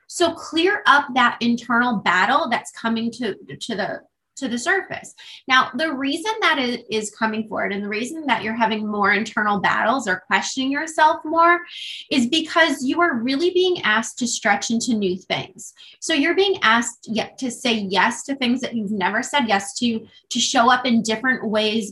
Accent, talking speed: American, 190 wpm